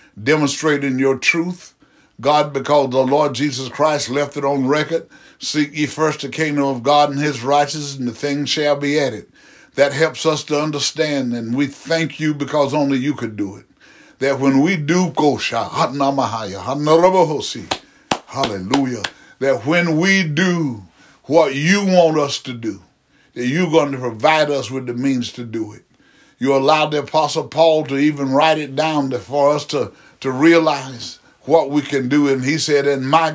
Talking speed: 170 wpm